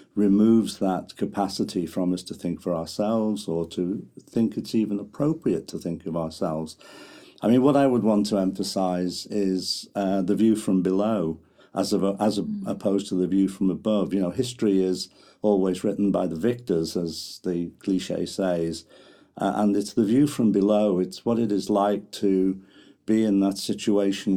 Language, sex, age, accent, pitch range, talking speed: English, male, 50-69, British, 95-105 Hz, 175 wpm